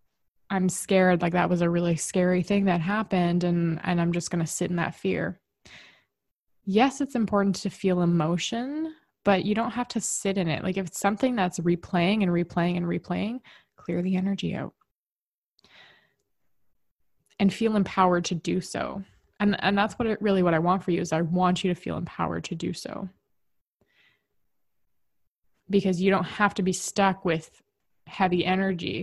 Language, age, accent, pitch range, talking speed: English, 20-39, American, 175-195 Hz, 180 wpm